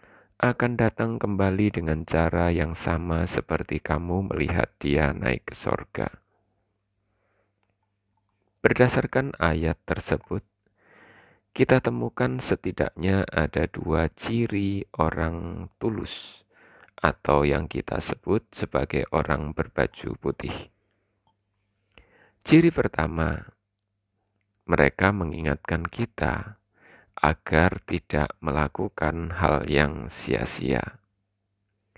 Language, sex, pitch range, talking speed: Indonesian, male, 85-105 Hz, 85 wpm